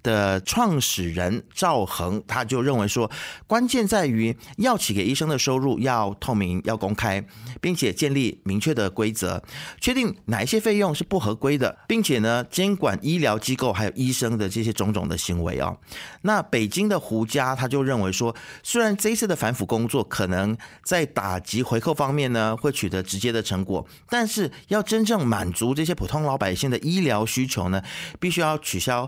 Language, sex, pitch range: Chinese, male, 105-150 Hz